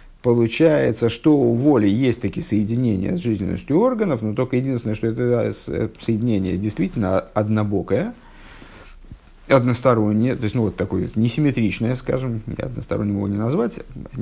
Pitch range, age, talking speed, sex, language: 105-125 Hz, 50-69, 120 wpm, male, Russian